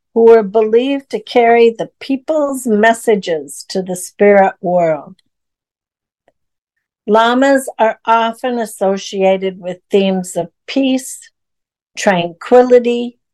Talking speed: 95 wpm